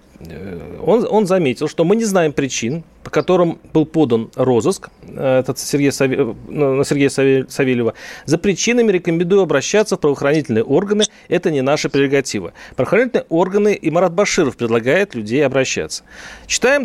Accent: native